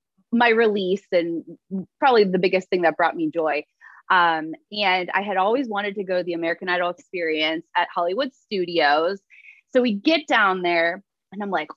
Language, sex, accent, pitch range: English, female, American, 190-275 Hz